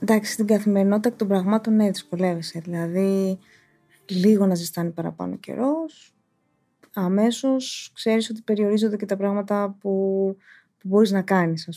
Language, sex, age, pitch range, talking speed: Greek, female, 20-39, 190-240 Hz, 140 wpm